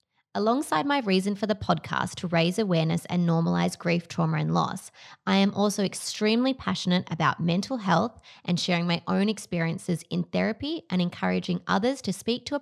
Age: 20-39